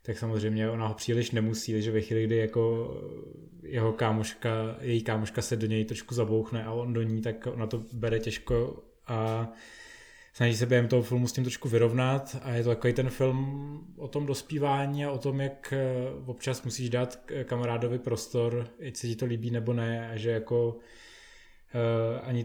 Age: 20-39